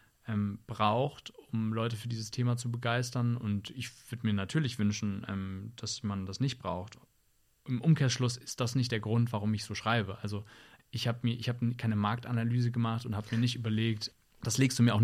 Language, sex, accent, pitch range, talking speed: German, male, German, 105-115 Hz, 195 wpm